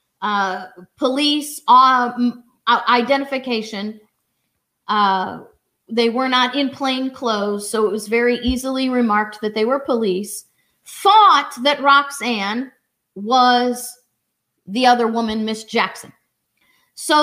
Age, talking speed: 40-59, 110 wpm